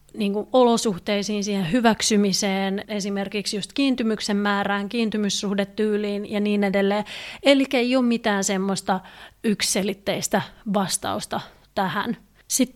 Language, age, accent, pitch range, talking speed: Finnish, 30-49, native, 195-220 Hz, 100 wpm